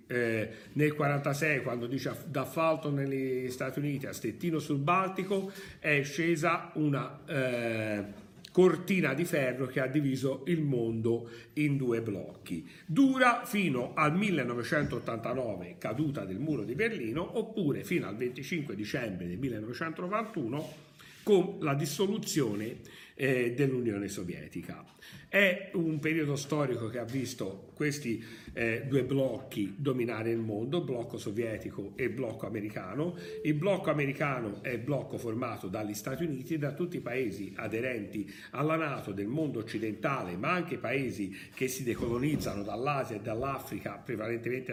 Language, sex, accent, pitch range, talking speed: Italian, male, native, 115-160 Hz, 135 wpm